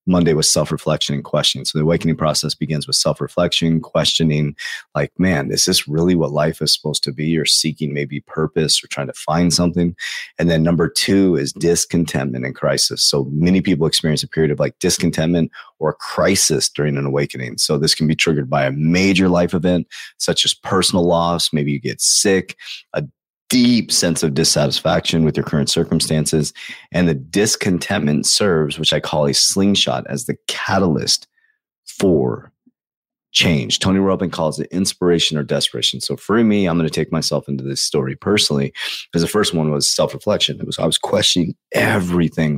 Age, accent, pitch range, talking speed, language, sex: 30-49, American, 75-85 Hz, 180 wpm, English, male